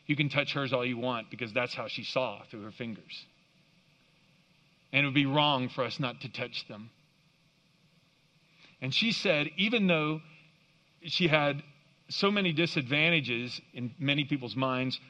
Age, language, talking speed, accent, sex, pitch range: 40-59, English, 160 wpm, American, male, 145-180 Hz